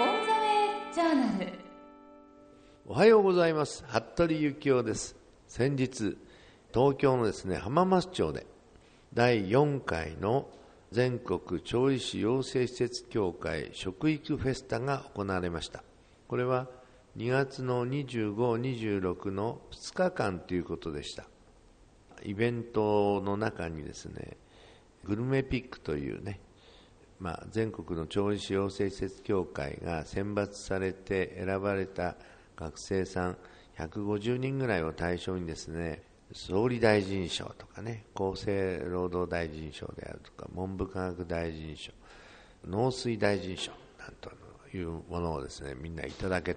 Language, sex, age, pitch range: Japanese, male, 60-79, 90-130 Hz